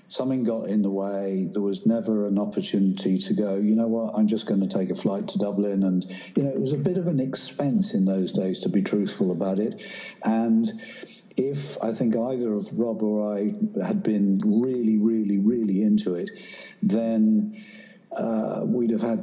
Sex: male